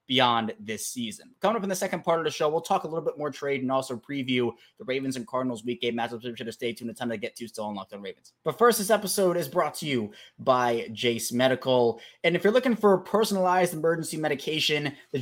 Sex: male